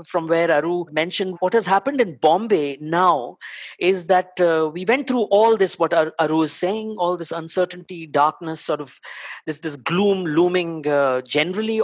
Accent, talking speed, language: Indian, 170 wpm, English